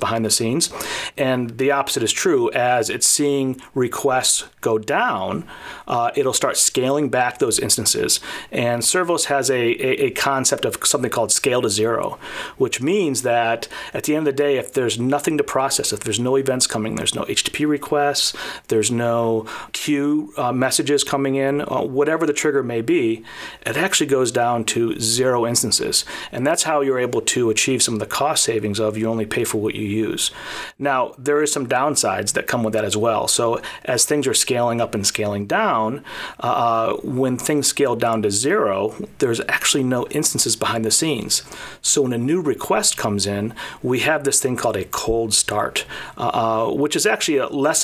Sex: male